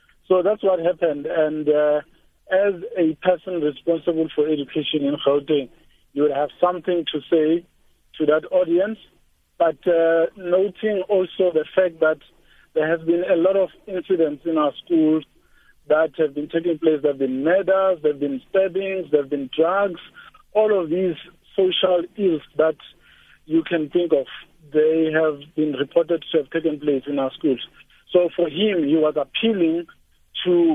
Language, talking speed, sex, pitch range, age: English, 165 wpm, male, 155-185 Hz, 50-69